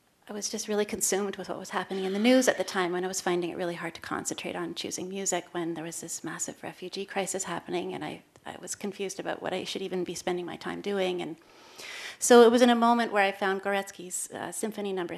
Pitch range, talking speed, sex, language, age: 180-210 Hz, 255 wpm, female, English, 30-49